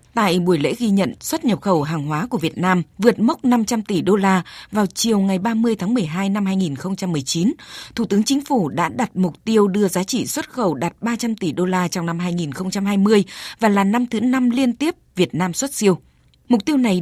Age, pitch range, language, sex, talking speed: 20-39, 180-235 Hz, Vietnamese, female, 220 wpm